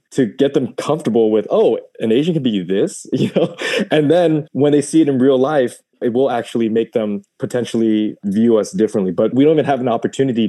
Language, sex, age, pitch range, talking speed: English, male, 20-39, 105-130 Hz, 220 wpm